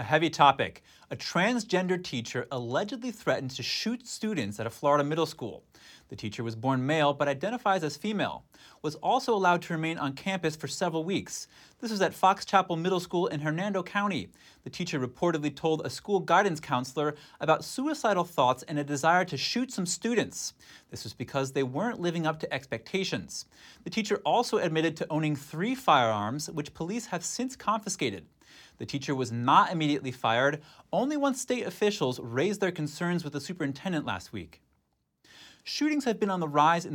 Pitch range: 125-185 Hz